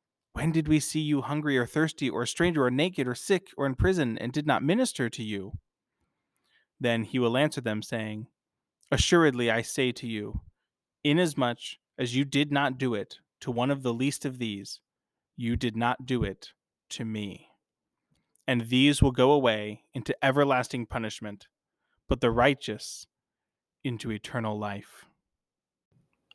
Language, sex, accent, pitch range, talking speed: English, male, American, 110-140 Hz, 160 wpm